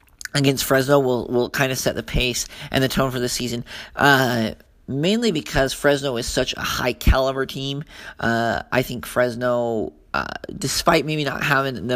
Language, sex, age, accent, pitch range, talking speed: English, male, 40-59, American, 120-140 Hz, 175 wpm